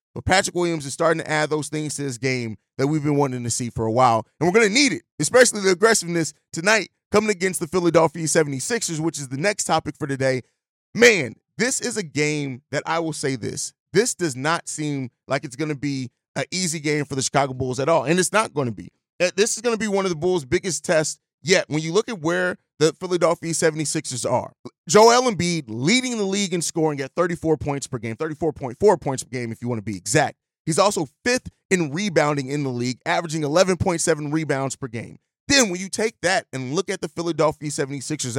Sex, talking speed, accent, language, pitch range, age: male, 225 wpm, American, English, 140-185 Hz, 30-49